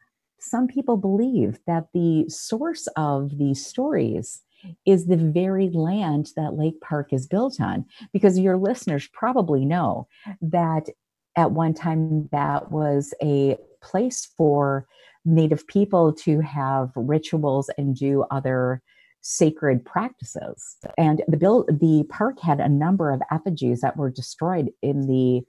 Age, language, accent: 50-69, English, American